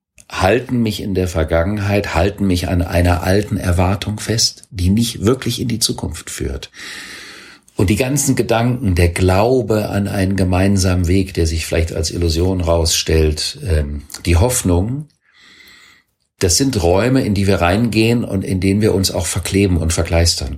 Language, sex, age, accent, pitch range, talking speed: German, male, 50-69, German, 85-105 Hz, 155 wpm